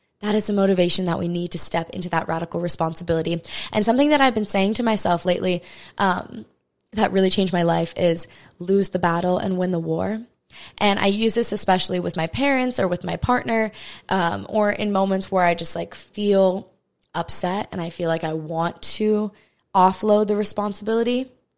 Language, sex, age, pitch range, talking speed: English, female, 20-39, 180-225 Hz, 190 wpm